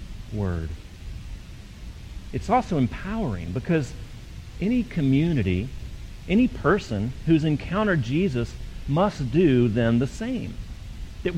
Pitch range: 100-150 Hz